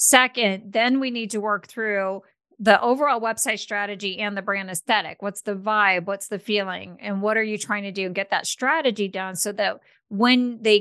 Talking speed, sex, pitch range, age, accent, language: 205 wpm, female, 185-220 Hz, 40-59, American, English